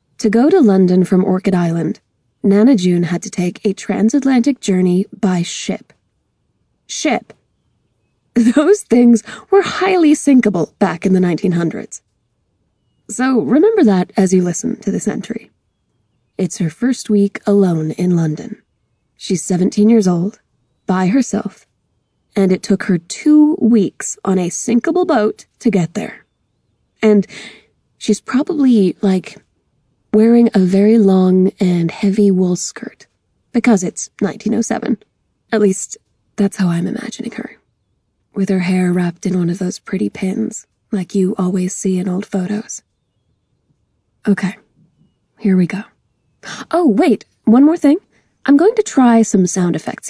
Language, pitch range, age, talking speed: English, 180-230 Hz, 20-39, 140 wpm